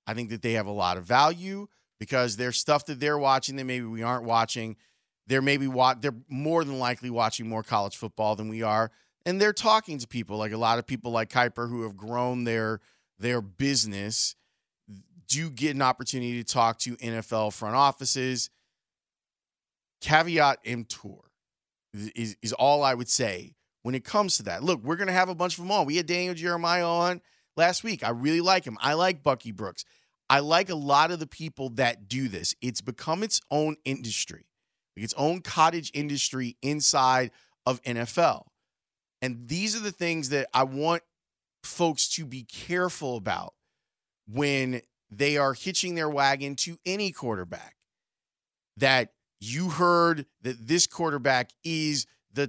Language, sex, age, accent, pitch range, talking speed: English, male, 30-49, American, 120-165 Hz, 175 wpm